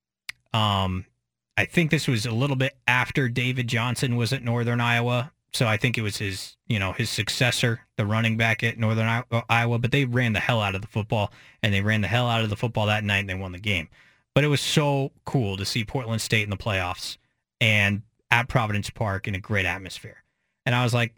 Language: English